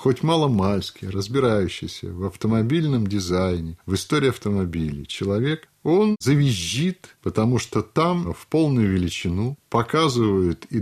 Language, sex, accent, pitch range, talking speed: Russian, male, native, 110-145 Hz, 110 wpm